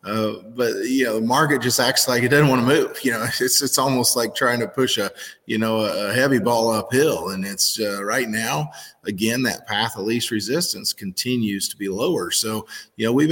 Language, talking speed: English, 220 wpm